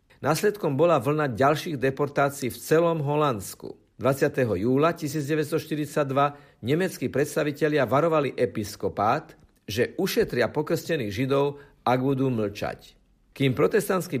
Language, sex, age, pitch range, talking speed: Slovak, male, 50-69, 115-155 Hz, 100 wpm